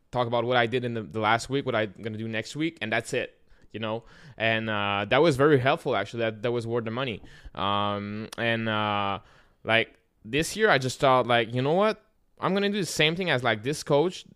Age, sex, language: 20-39, male, English